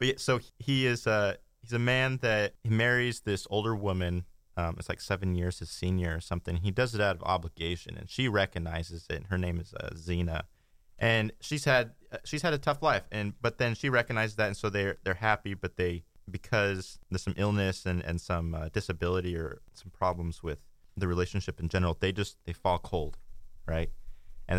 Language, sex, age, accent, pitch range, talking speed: English, male, 20-39, American, 85-105 Hz, 205 wpm